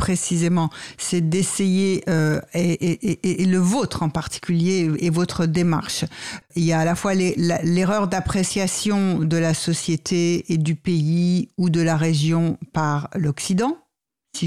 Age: 60-79